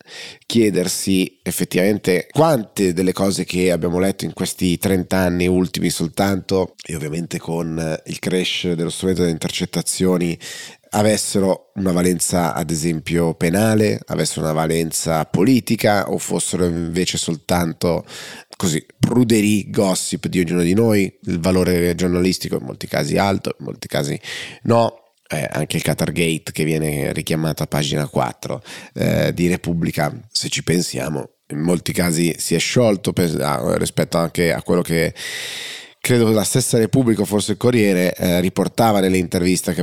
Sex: male